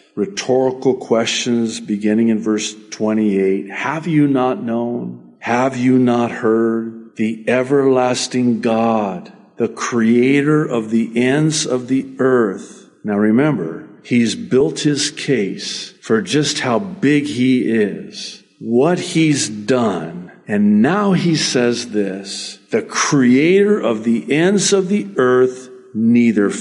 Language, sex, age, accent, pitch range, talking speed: English, male, 50-69, American, 120-200 Hz, 120 wpm